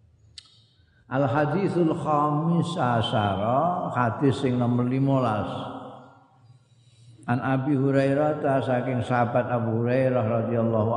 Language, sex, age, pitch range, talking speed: Indonesian, male, 50-69, 115-135 Hz, 90 wpm